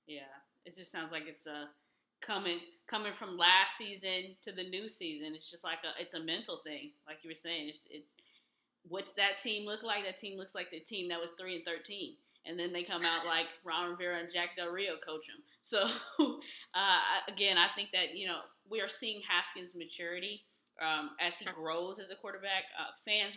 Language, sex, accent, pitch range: English, female, American, 165-205 Hz